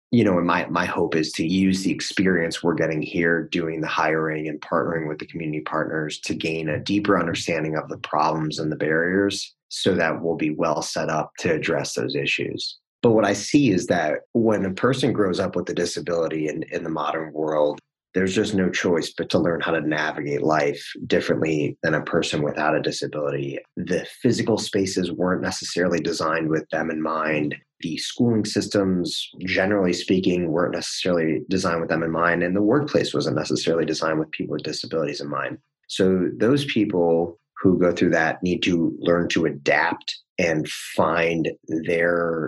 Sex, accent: male, American